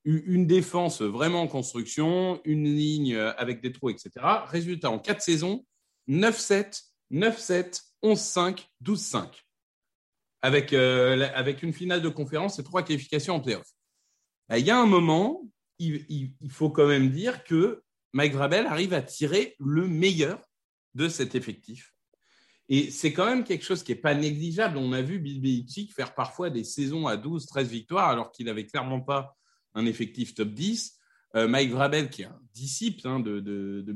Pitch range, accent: 120-170 Hz, French